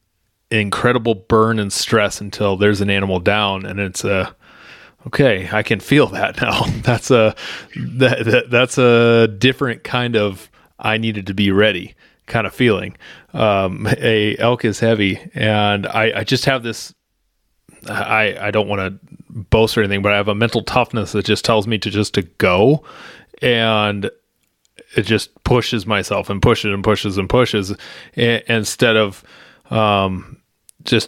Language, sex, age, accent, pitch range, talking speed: English, male, 30-49, American, 100-115 Hz, 165 wpm